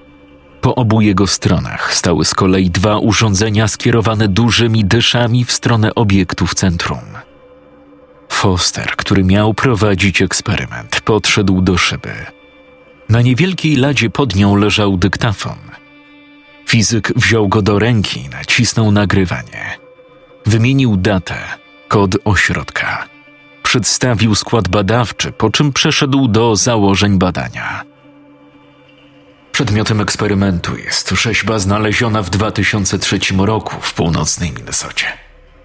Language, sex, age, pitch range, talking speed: Polish, male, 40-59, 95-115 Hz, 110 wpm